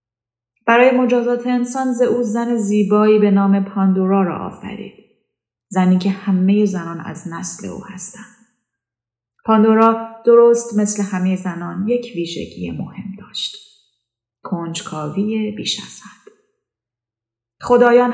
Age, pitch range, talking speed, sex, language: 30-49, 165-215 Hz, 115 wpm, female, Persian